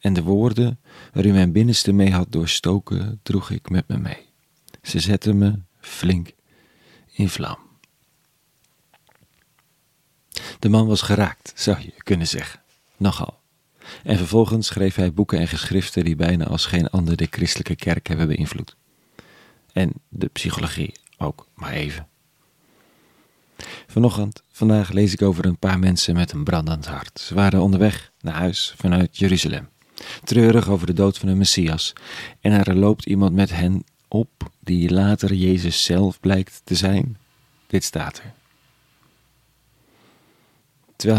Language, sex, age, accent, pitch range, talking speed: Dutch, male, 40-59, Dutch, 85-110 Hz, 140 wpm